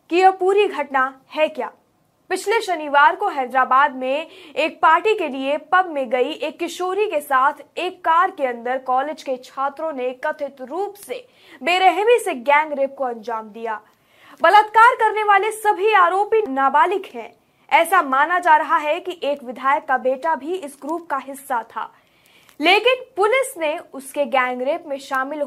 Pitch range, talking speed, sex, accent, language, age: 270-360 Hz, 165 wpm, female, native, Hindi, 20-39